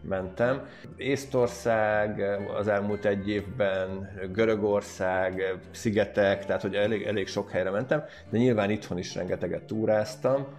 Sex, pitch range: male, 95-110 Hz